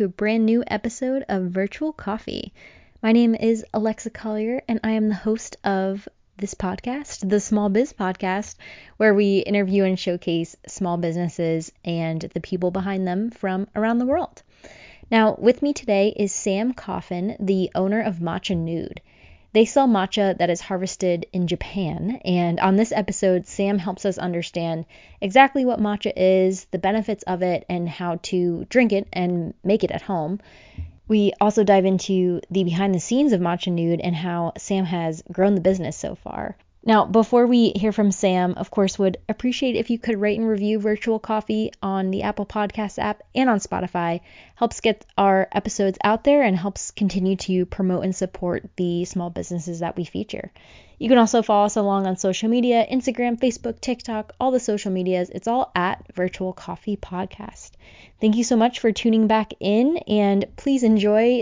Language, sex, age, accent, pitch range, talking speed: English, female, 20-39, American, 185-225 Hz, 180 wpm